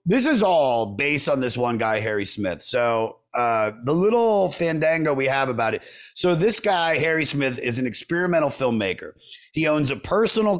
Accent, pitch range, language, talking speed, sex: American, 115-155 Hz, English, 180 wpm, male